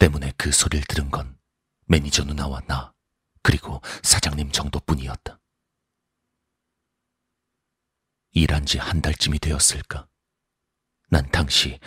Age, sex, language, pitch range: 40-59, male, Korean, 70-85 Hz